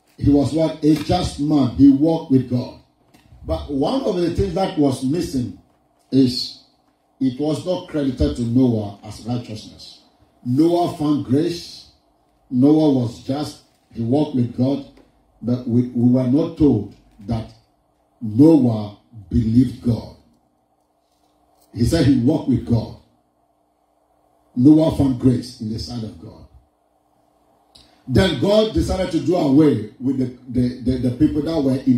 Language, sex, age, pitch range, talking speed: English, male, 50-69, 125-160 Hz, 145 wpm